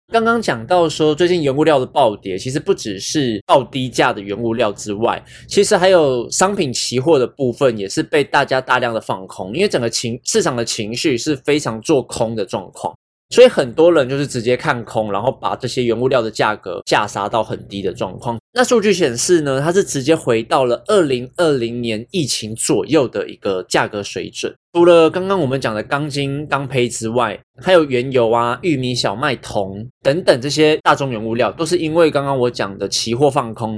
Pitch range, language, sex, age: 115-155 Hz, Chinese, male, 20-39